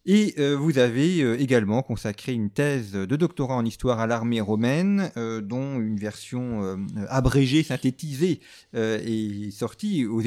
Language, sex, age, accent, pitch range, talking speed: French, male, 40-59, French, 115-150 Hz, 160 wpm